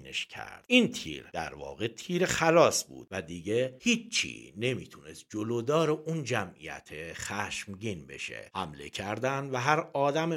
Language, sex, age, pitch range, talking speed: Persian, male, 50-69, 90-150 Hz, 125 wpm